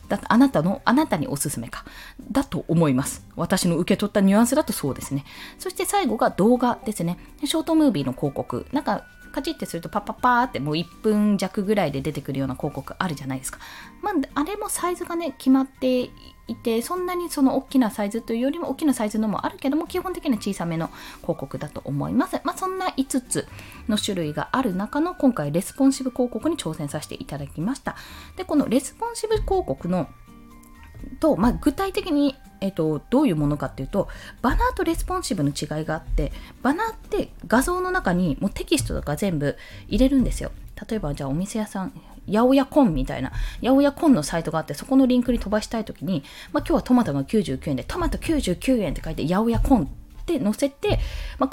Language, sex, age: Japanese, female, 20-39